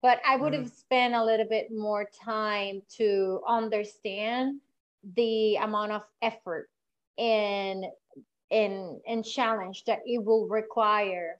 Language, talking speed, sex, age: English, 125 wpm, female, 30-49